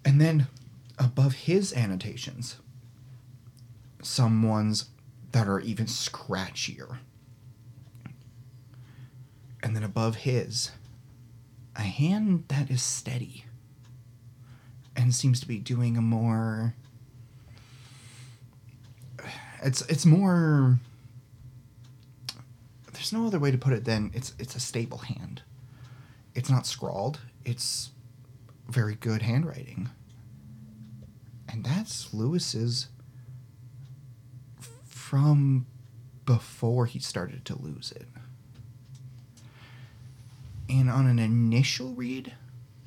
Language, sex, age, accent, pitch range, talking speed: English, male, 30-49, American, 120-130 Hz, 90 wpm